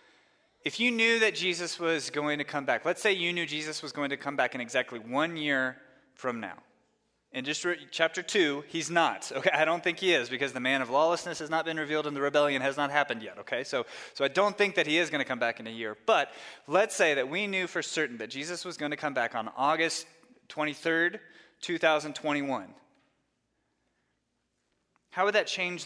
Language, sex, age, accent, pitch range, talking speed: English, male, 20-39, American, 120-165 Hz, 220 wpm